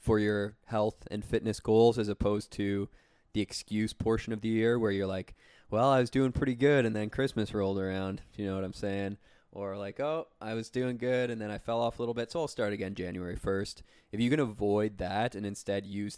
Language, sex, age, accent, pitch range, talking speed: English, male, 20-39, American, 95-110 Hz, 235 wpm